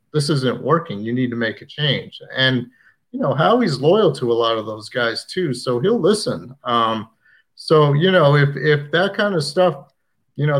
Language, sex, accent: English, male, American